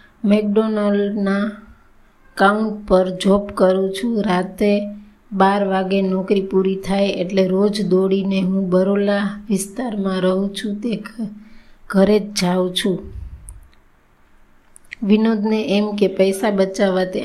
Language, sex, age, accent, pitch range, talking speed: Gujarati, female, 20-39, native, 190-210 Hz, 75 wpm